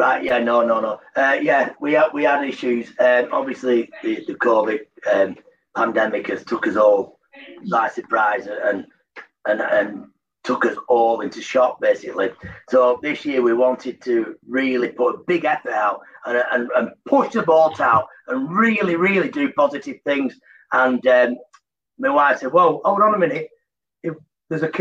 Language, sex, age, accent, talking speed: English, male, 40-59, British, 170 wpm